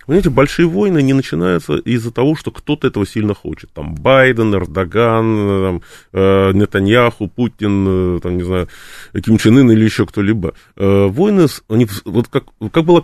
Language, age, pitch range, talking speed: Russian, 20-39, 105-135 Hz, 155 wpm